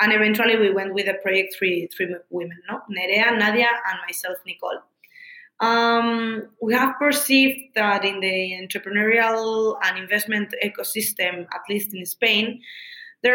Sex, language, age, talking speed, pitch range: female, English, 20-39, 145 wpm, 195-230 Hz